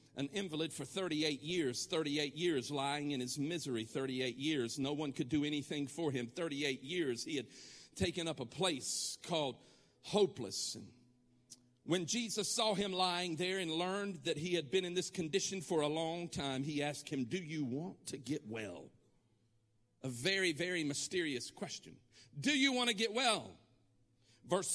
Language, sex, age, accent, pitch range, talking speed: English, male, 50-69, American, 125-180 Hz, 170 wpm